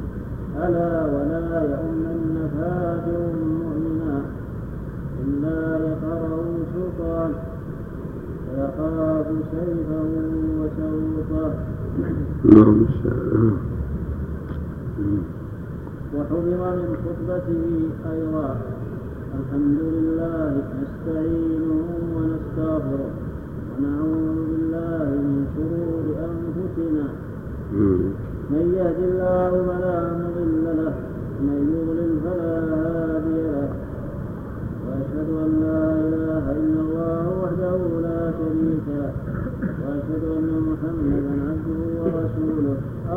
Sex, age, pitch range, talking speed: male, 40-59, 140-165 Hz, 75 wpm